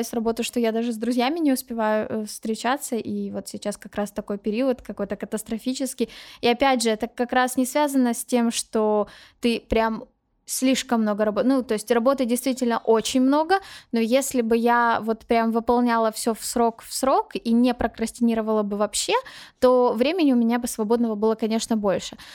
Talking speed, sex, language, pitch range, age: 185 wpm, female, Ukrainian, 230-275 Hz, 10-29